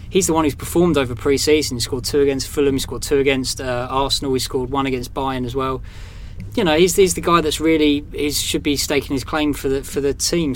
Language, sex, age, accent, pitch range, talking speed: English, male, 20-39, British, 120-145 Hz, 245 wpm